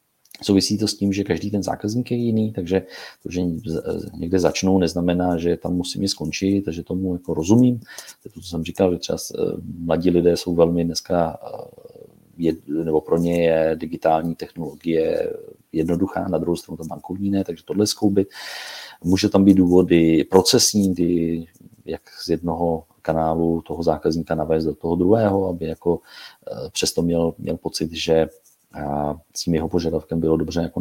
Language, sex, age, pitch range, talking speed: Czech, male, 40-59, 85-95 Hz, 165 wpm